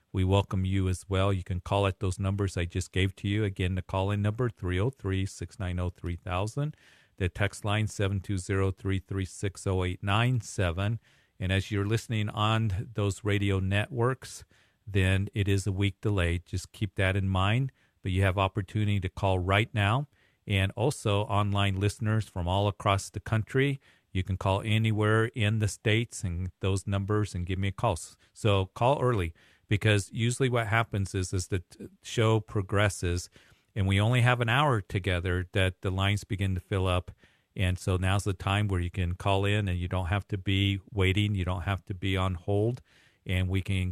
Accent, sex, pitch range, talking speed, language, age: American, male, 95-105 Hz, 175 wpm, English, 40-59